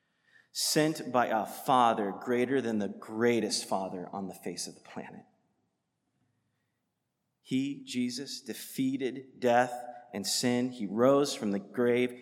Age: 30-49